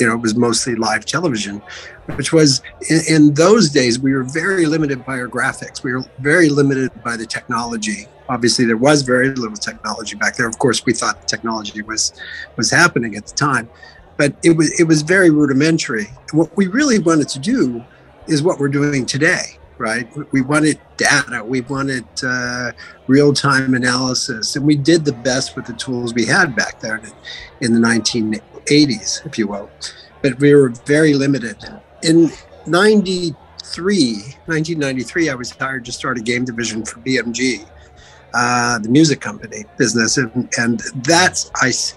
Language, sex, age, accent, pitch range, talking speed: English, male, 50-69, American, 115-150 Hz, 170 wpm